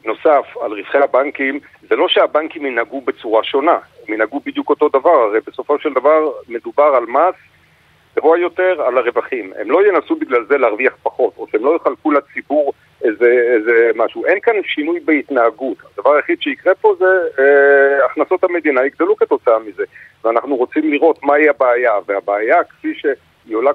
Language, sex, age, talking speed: Hebrew, male, 50-69, 165 wpm